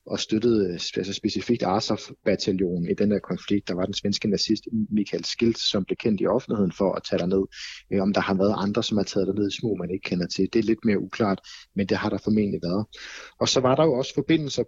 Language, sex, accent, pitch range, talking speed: Danish, male, native, 95-115 Hz, 240 wpm